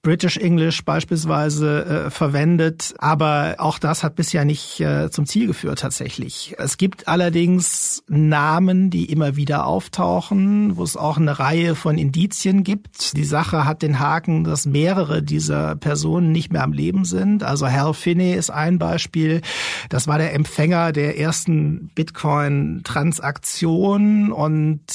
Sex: male